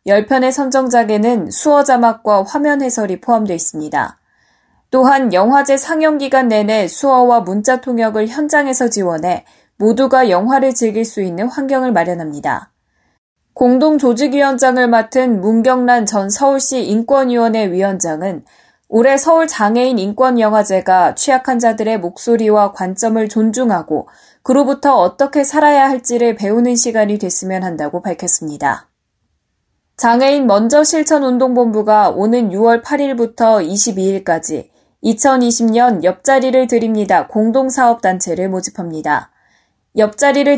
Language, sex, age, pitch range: Korean, female, 20-39, 205-260 Hz